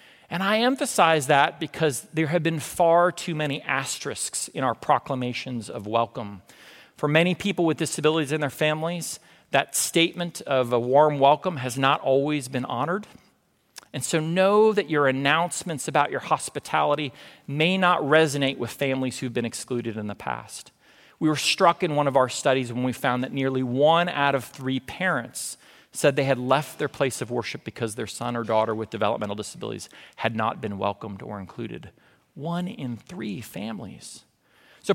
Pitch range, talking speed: 125-170 Hz, 175 wpm